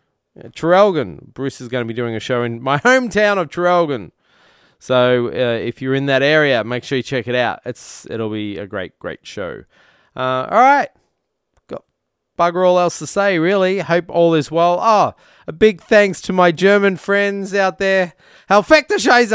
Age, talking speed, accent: 20-39, 190 wpm, Australian